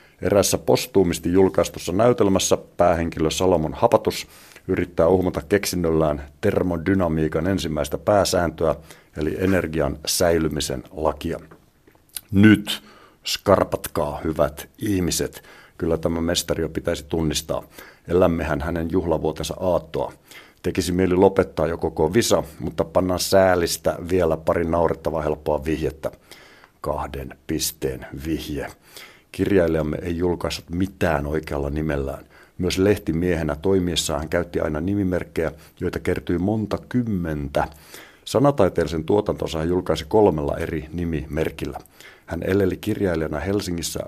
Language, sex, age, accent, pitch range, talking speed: Finnish, male, 60-79, native, 80-95 Hz, 105 wpm